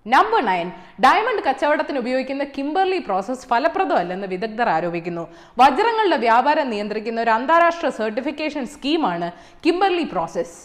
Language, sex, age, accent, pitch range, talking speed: Malayalam, female, 20-39, native, 225-340 Hz, 105 wpm